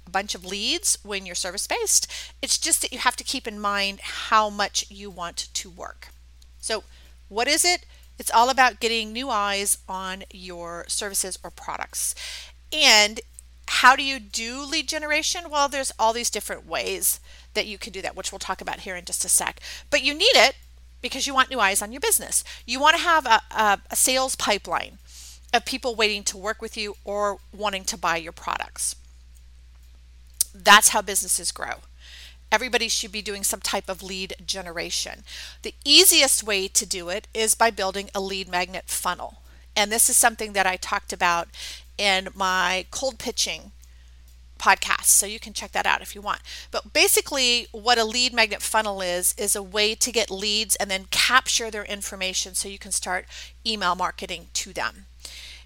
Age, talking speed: 40-59, 185 wpm